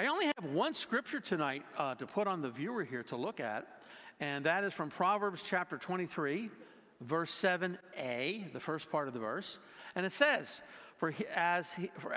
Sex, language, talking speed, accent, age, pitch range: male, English, 175 wpm, American, 50-69, 160-215 Hz